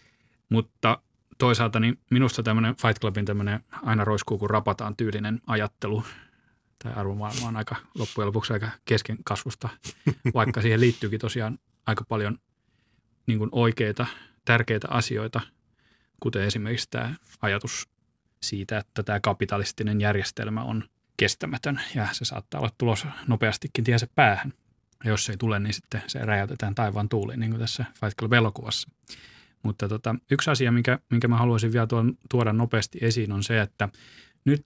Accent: native